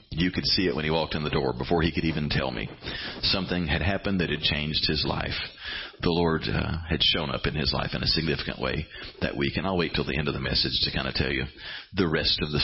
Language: English